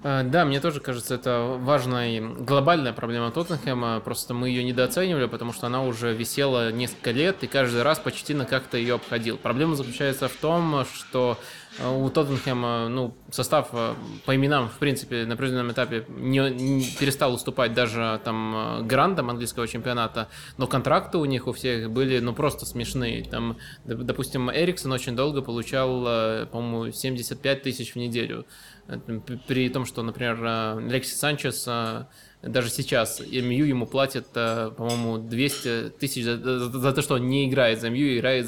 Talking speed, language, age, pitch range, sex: 155 wpm, Russian, 20-39, 120-140 Hz, male